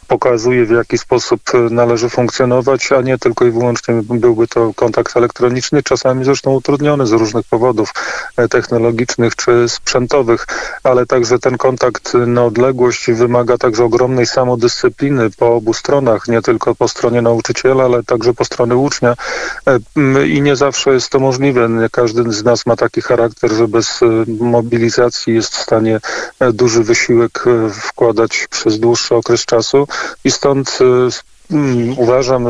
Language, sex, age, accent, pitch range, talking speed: Polish, male, 40-59, native, 115-130 Hz, 140 wpm